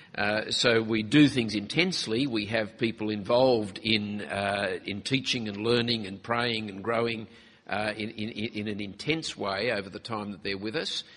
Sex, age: male, 50-69